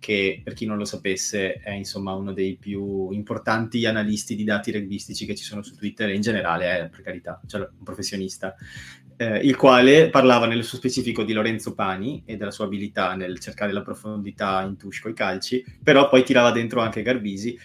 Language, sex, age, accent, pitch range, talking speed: Italian, male, 30-49, native, 105-125 Hz, 200 wpm